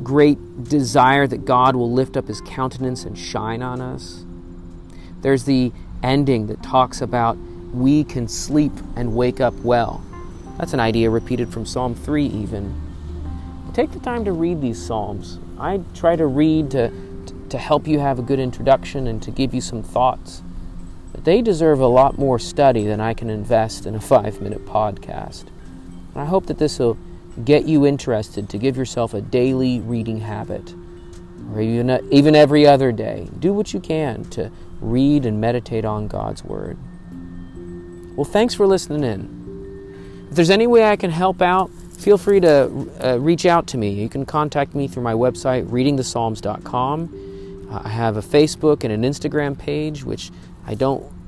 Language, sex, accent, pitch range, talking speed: English, male, American, 95-140 Hz, 175 wpm